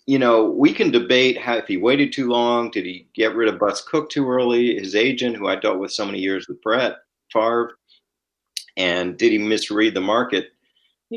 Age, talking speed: 40-59, 205 wpm